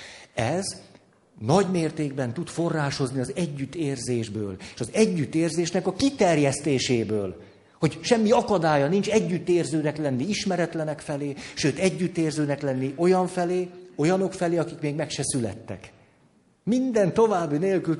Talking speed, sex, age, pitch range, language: 115 wpm, male, 60-79, 140-185 Hz, Hungarian